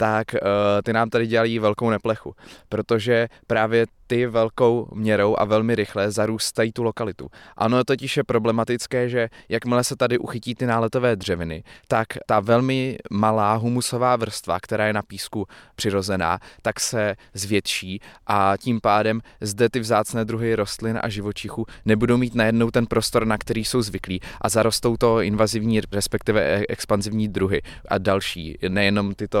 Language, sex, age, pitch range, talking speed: Czech, male, 20-39, 95-115 Hz, 150 wpm